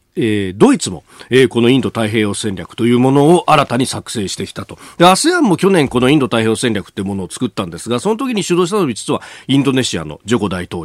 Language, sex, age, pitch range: Japanese, male, 40-59, 100-145 Hz